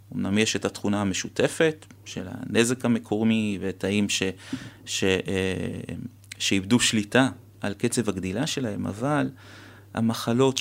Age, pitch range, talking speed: 30-49, 105-125 Hz, 100 wpm